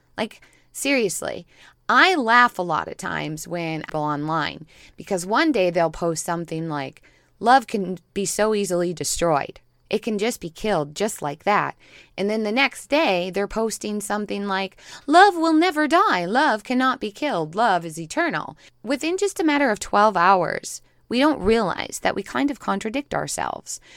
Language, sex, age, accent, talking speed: English, female, 20-39, American, 170 wpm